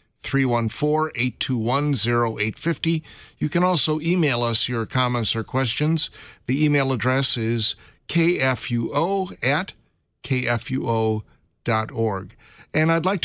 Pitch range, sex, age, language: 115-150 Hz, male, 50-69, English